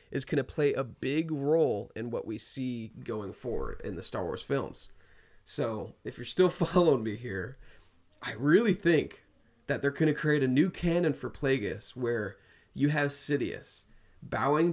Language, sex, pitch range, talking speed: English, male, 120-150 Hz, 165 wpm